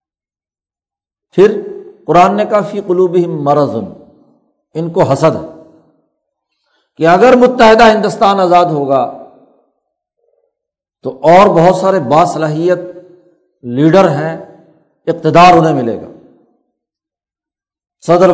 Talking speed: 95 wpm